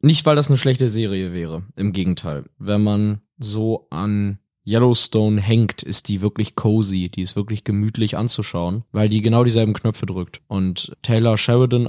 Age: 20-39